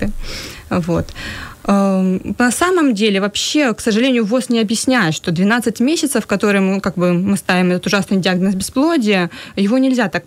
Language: Ukrainian